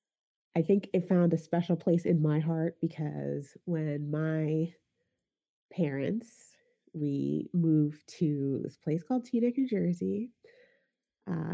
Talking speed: 125 wpm